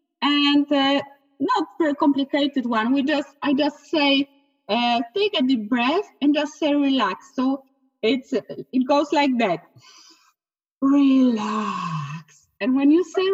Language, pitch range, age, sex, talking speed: English, 245-310 Hz, 30-49, female, 145 wpm